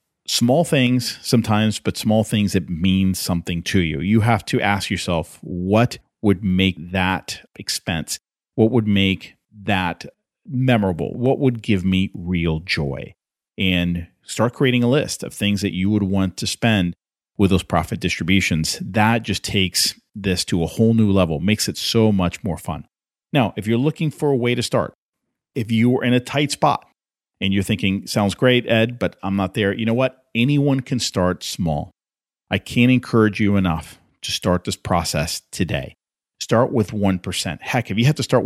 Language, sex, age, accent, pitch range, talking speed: English, male, 40-59, American, 90-115 Hz, 180 wpm